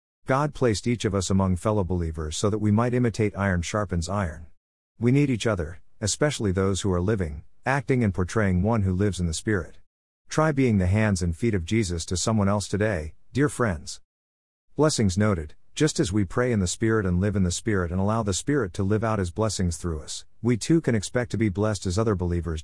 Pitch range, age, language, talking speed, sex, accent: 90-115 Hz, 50-69, English, 220 wpm, male, American